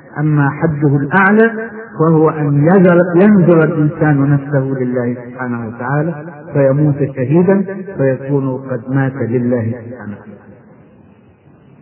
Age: 50-69